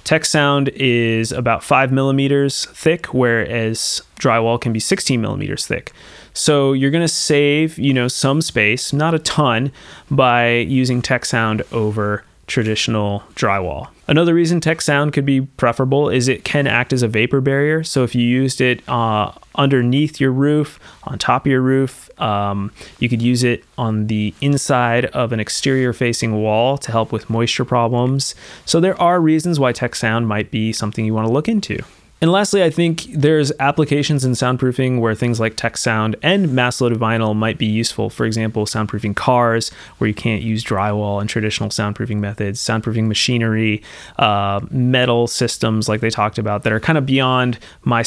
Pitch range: 110-140 Hz